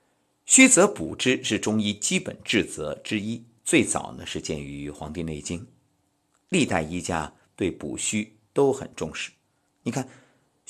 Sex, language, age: male, Chinese, 50-69